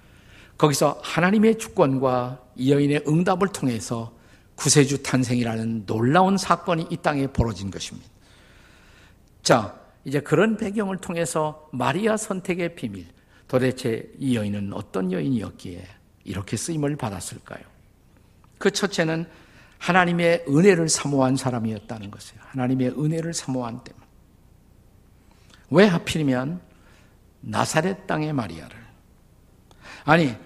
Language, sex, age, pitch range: Korean, male, 50-69, 110-165 Hz